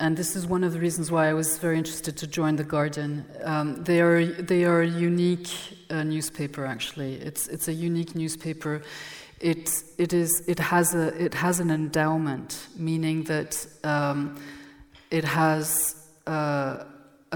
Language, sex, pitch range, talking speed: Danish, female, 145-165 Hz, 165 wpm